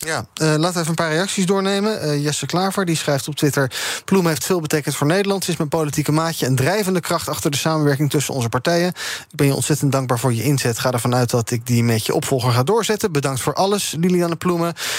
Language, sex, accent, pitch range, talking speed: Dutch, male, Dutch, 135-180 Hz, 235 wpm